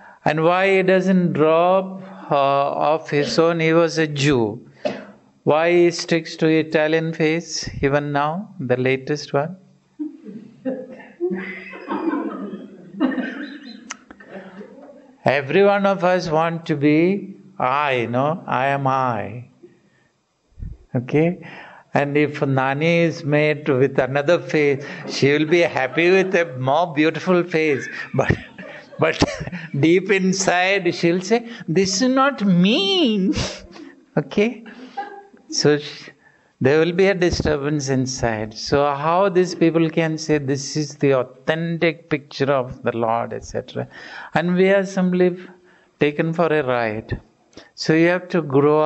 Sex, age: male, 60-79